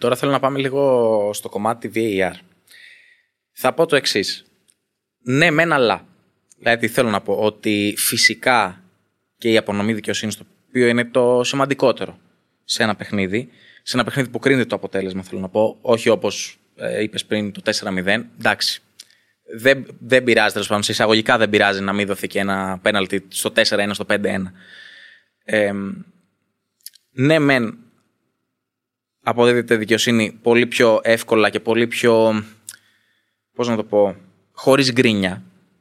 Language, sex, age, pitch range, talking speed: Greek, male, 20-39, 105-135 Hz, 140 wpm